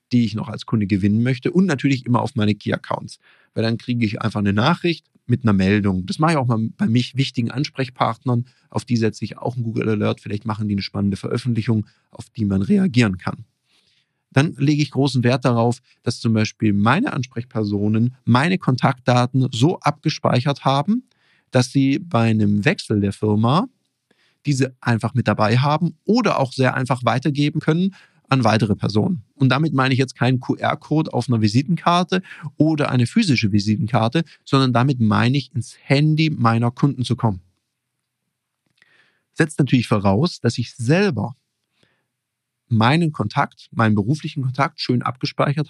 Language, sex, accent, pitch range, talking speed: German, male, German, 115-145 Hz, 165 wpm